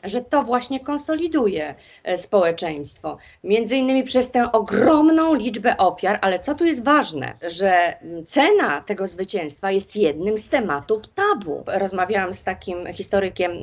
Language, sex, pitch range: Polish, female, 180-245 Hz